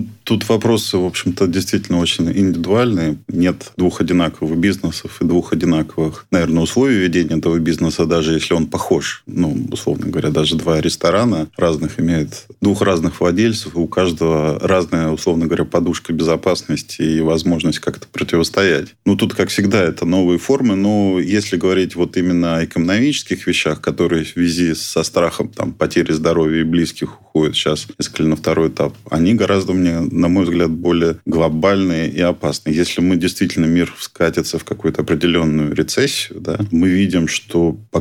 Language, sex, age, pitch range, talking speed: Russian, male, 20-39, 80-90 Hz, 160 wpm